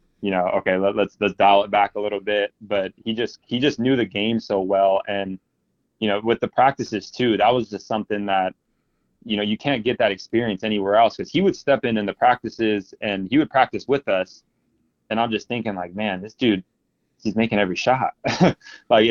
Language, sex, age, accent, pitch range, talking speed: English, male, 20-39, American, 100-115 Hz, 215 wpm